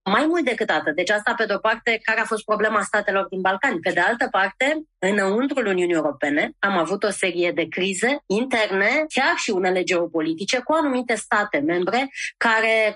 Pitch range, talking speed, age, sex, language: 185-245 Hz, 180 wpm, 20-39, female, Romanian